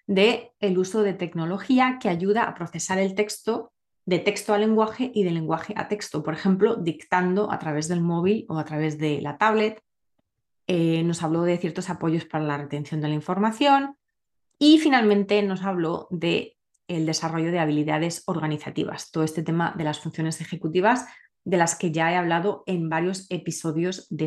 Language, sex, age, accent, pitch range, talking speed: Spanish, female, 30-49, Spanish, 160-205 Hz, 175 wpm